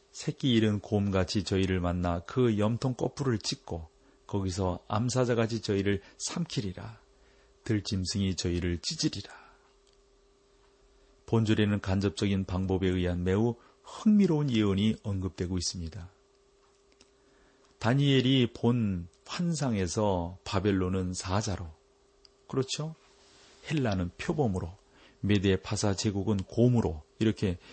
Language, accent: Korean, native